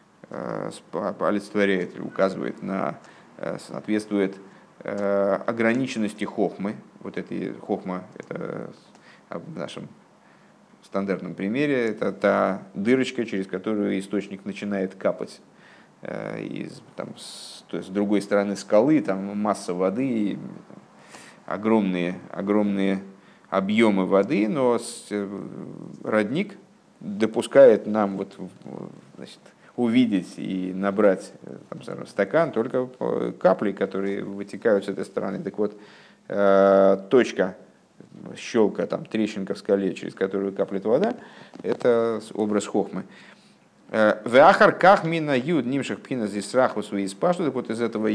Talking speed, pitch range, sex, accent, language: 100 wpm, 95-110 Hz, male, native, Russian